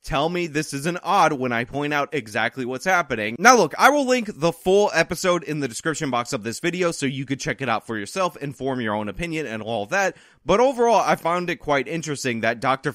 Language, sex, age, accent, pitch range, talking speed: English, male, 20-39, American, 120-165 Hz, 235 wpm